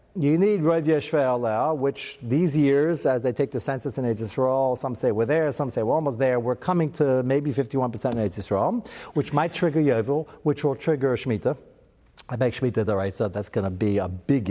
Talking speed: 215 wpm